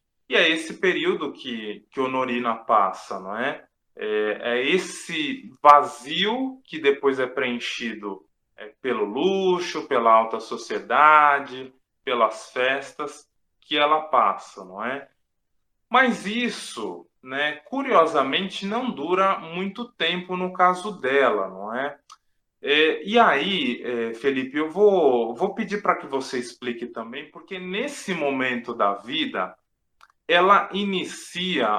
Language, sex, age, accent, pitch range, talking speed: Portuguese, male, 20-39, Brazilian, 130-190 Hz, 120 wpm